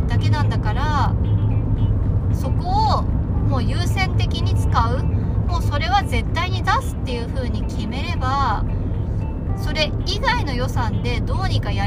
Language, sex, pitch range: Japanese, female, 90-105 Hz